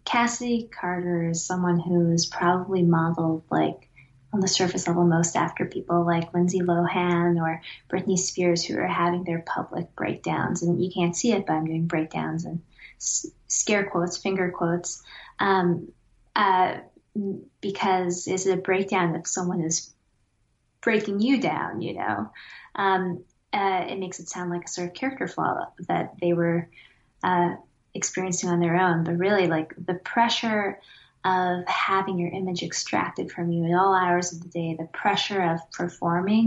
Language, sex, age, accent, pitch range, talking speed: English, female, 20-39, American, 170-195 Hz, 160 wpm